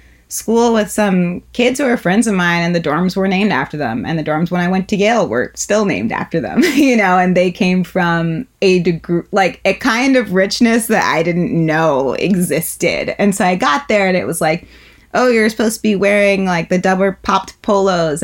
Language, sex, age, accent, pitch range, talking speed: English, female, 20-39, American, 155-195 Hz, 220 wpm